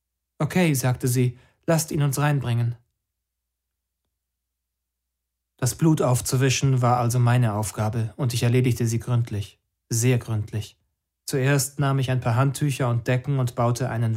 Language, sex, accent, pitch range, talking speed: German, male, German, 110-130 Hz, 135 wpm